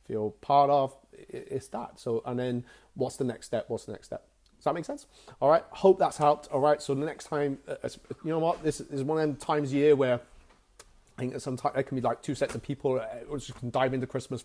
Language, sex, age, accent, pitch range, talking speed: English, male, 30-49, British, 115-140 Hz, 260 wpm